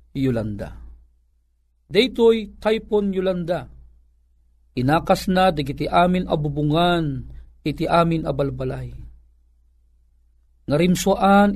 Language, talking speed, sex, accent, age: Filipino, 65 wpm, male, native, 50-69